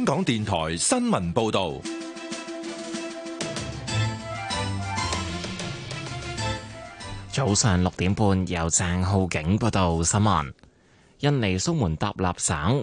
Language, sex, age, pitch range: Chinese, male, 20-39, 90-120 Hz